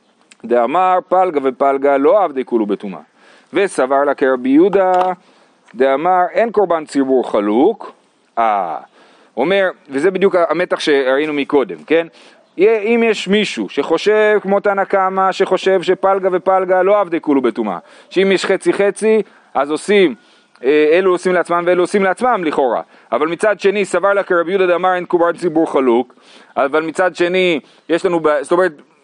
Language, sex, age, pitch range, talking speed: Hebrew, male, 40-59, 170-215 Hz, 45 wpm